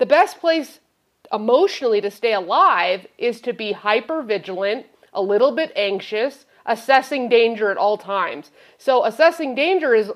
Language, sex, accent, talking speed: English, female, American, 150 wpm